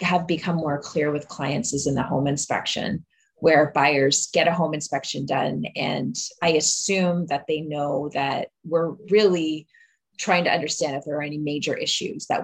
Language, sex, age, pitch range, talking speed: English, female, 20-39, 150-180 Hz, 180 wpm